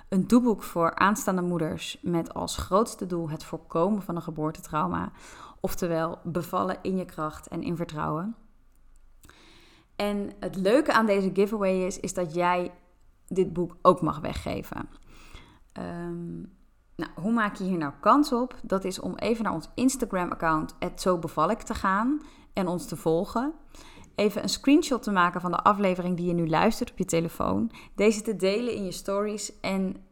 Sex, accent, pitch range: female, Dutch, 165-210 Hz